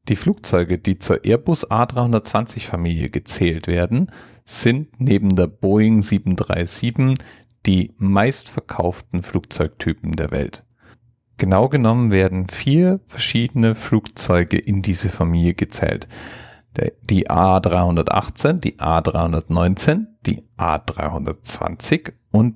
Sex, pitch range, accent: male, 85-115 Hz, German